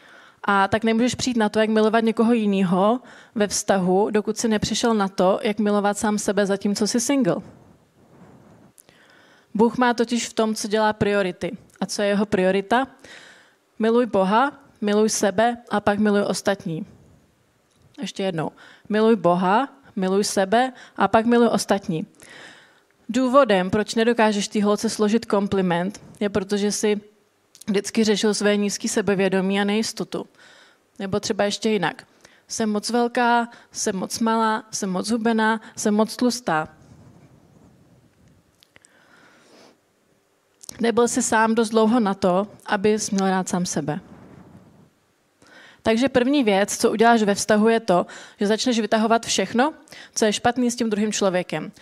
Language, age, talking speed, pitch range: Czech, 20-39, 140 wpm, 200-230 Hz